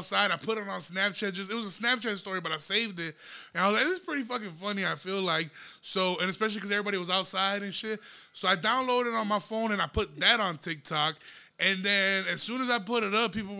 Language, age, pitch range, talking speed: English, 20-39, 175-210 Hz, 260 wpm